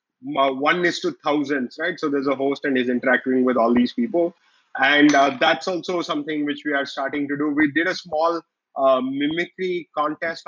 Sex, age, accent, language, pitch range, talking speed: male, 30-49, Indian, English, 140-160 Hz, 200 wpm